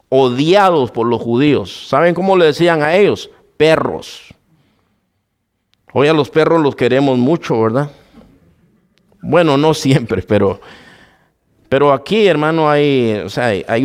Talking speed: 135 wpm